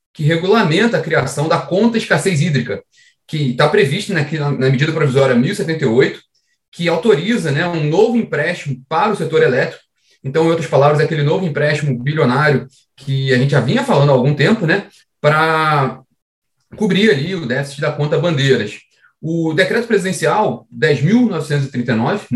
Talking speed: 155 wpm